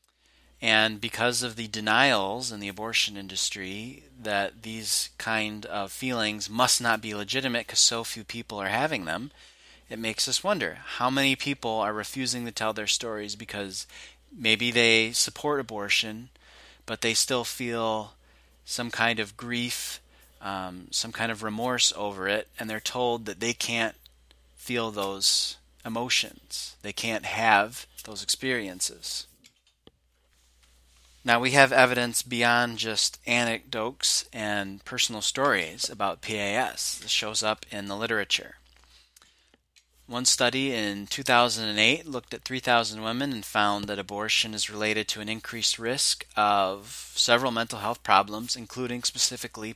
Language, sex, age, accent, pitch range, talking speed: English, male, 30-49, American, 100-120 Hz, 140 wpm